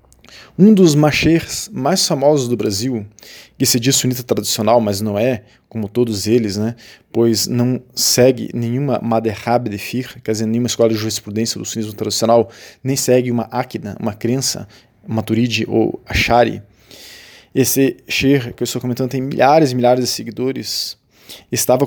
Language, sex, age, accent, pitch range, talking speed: Portuguese, male, 20-39, Brazilian, 110-135 Hz, 155 wpm